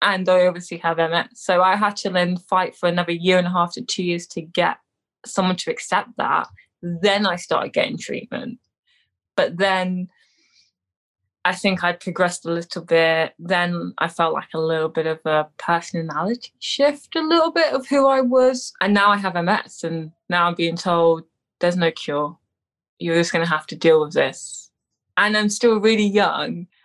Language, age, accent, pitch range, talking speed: English, 20-39, British, 160-195 Hz, 190 wpm